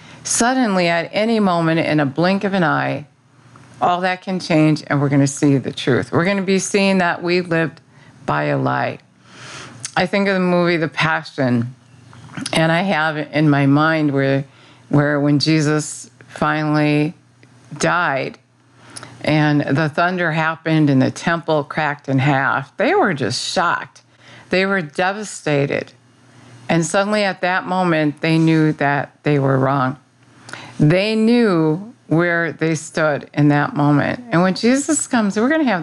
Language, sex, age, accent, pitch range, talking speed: English, female, 50-69, American, 140-185 Hz, 160 wpm